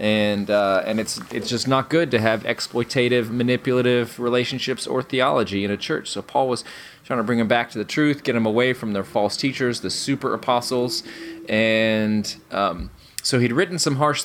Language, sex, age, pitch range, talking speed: English, male, 20-39, 105-135 Hz, 195 wpm